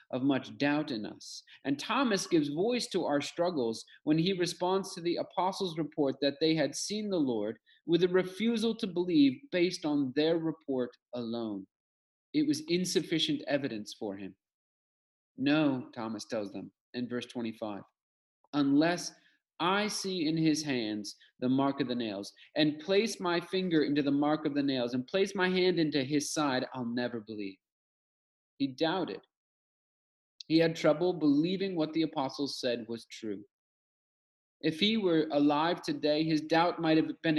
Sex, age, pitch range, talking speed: male, 40-59, 130-185 Hz, 160 wpm